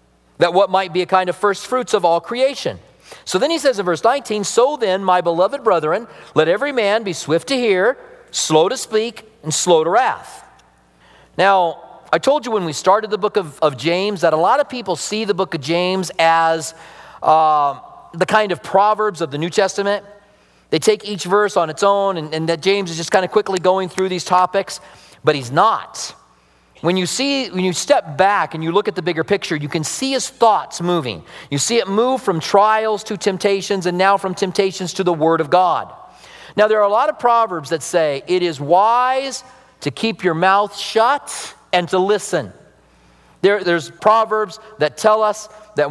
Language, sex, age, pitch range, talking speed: English, male, 40-59, 165-215 Hz, 205 wpm